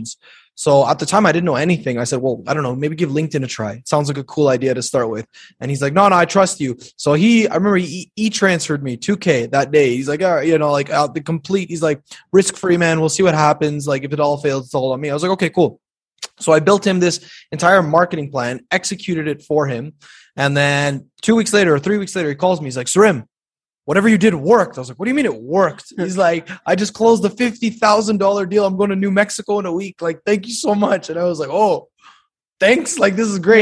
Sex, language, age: male, English, 20-39